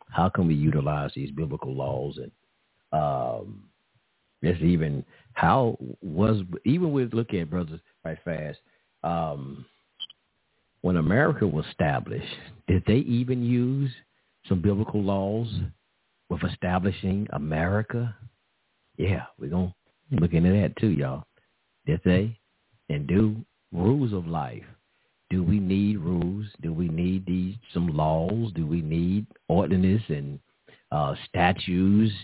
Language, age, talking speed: English, 50-69, 125 wpm